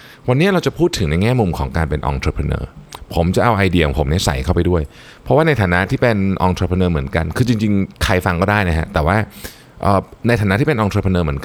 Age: 20-39